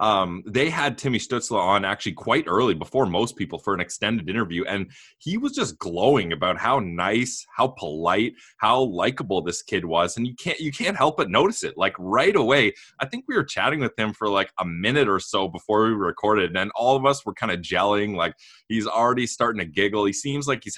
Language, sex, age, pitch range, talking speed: English, male, 20-39, 100-140 Hz, 220 wpm